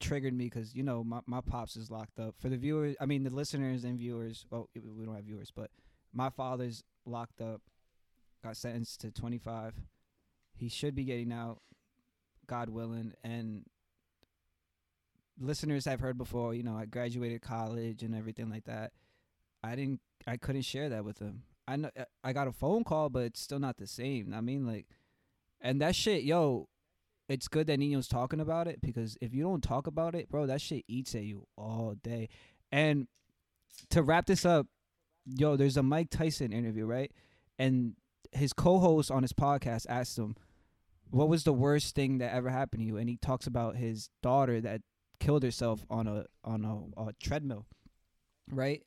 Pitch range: 110-135 Hz